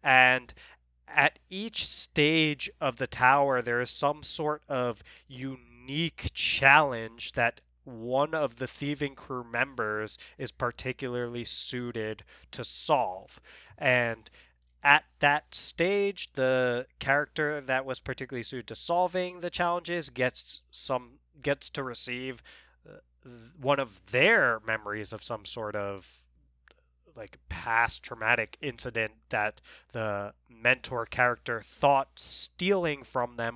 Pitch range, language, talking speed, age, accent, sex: 115-140 Hz, English, 115 wpm, 20-39, American, male